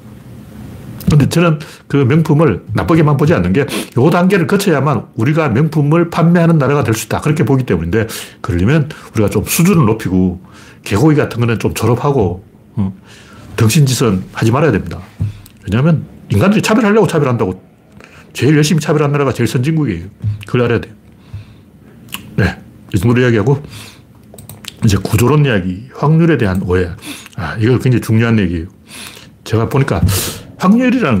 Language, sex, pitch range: Korean, male, 105-165 Hz